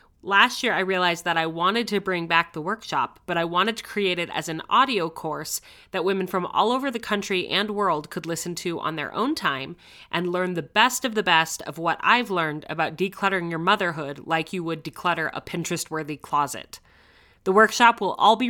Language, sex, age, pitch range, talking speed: English, female, 30-49, 165-205 Hz, 210 wpm